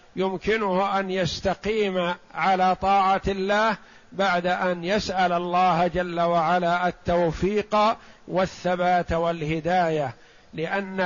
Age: 50-69